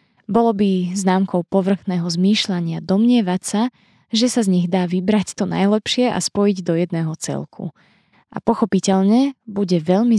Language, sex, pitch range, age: Slovak, female, 175-215 Hz, 20-39